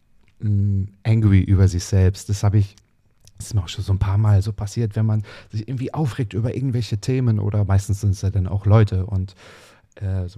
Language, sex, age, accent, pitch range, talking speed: German, male, 40-59, German, 100-110 Hz, 215 wpm